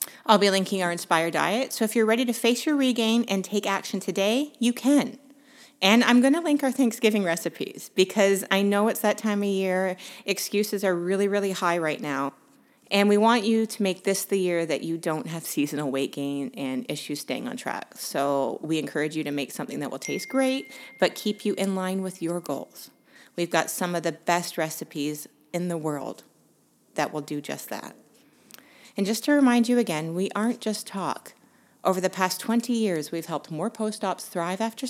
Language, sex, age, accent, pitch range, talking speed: English, female, 30-49, American, 170-220 Hz, 205 wpm